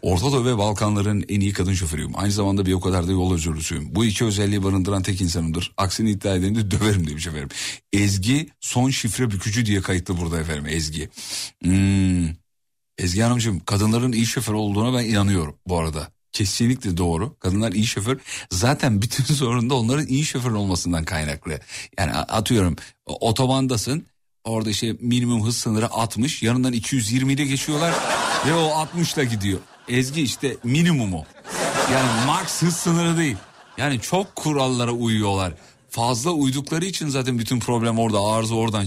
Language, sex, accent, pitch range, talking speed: Turkish, male, native, 100-145 Hz, 155 wpm